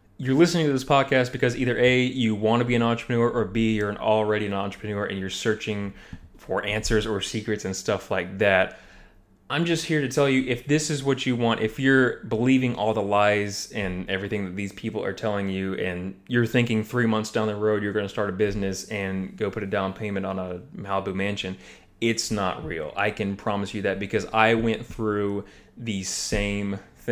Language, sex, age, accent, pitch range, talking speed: English, male, 20-39, American, 100-120 Hz, 210 wpm